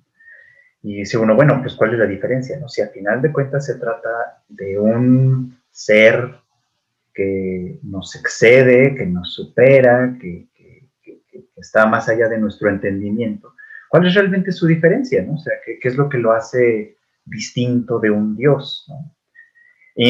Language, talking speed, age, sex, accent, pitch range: Spanish, 165 wpm, 30-49, male, Mexican, 105-165 Hz